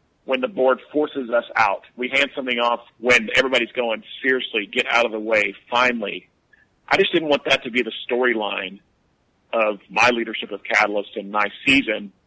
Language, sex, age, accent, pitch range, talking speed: English, male, 40-59, American, 115-145 Hz, 180 wpm